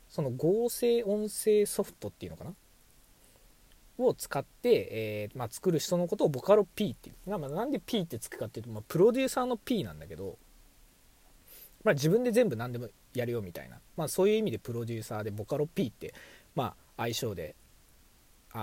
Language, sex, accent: Japanese, male, native